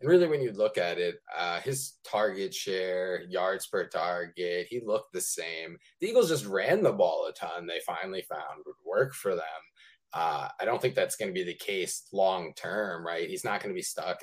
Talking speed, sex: 220 wpm, male